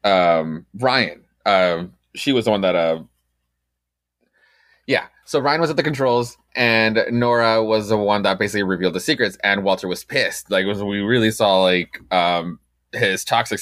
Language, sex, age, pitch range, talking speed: English, male, 20-39, 85-115 Hz, 170 wpm